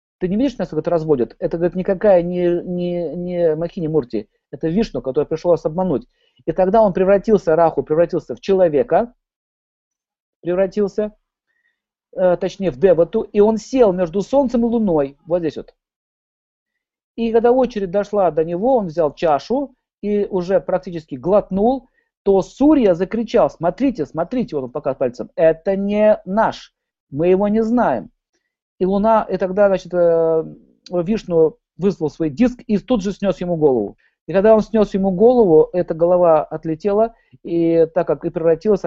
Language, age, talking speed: Russian, 50-69, 155 wpm